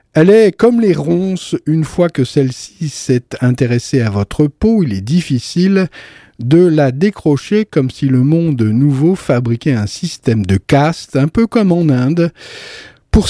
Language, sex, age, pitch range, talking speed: French, male, 50-69, 125-175 Hz, 165 wpm